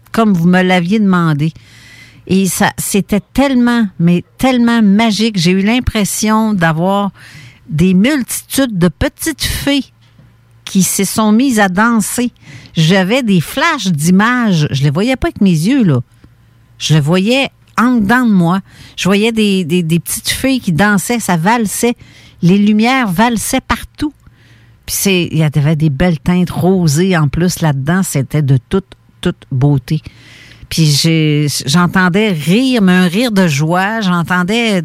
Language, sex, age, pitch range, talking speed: French, female, 50-69, 150-215 Hz, 155 wpm